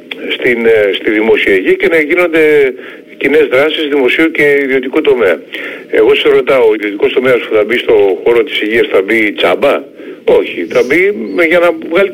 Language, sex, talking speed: Greek, male, 175 wpm